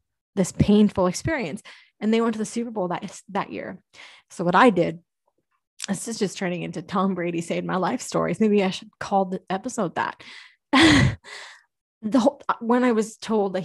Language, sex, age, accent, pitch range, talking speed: English, female, 20-39, American, 185-220 Hz, 185 wpm